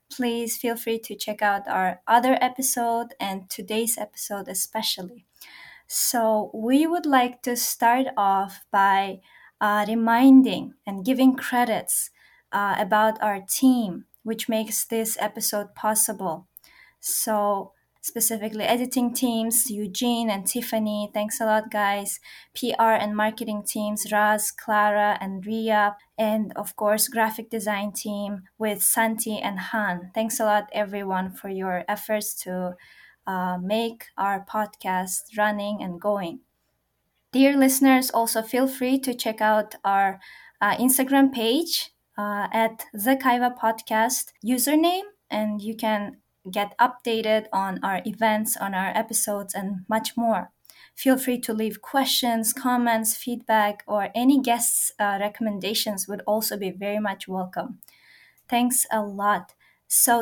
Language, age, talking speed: English, 20-39, 135 wpm